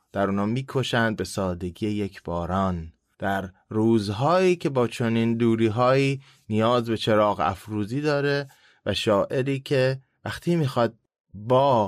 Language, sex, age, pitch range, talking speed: Persian, male, 20-39, 95-140 Hz, 120 wpm